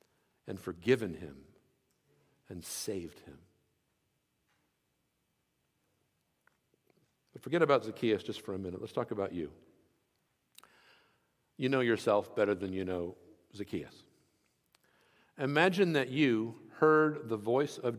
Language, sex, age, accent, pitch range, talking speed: English, male, 60-79, American, 95-145 Hz, 110 wpm